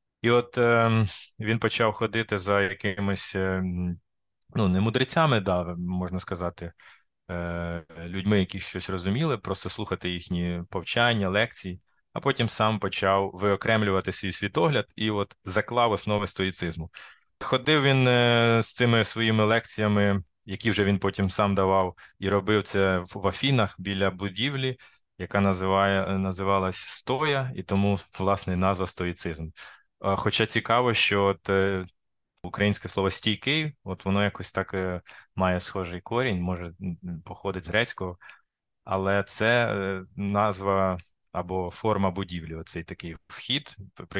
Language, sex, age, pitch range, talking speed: Ukrainian, male, 20-39, 90-105 Hz, 125 wpm